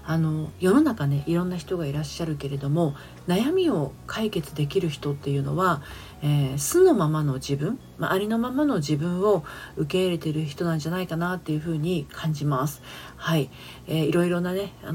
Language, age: Japanese, 40-59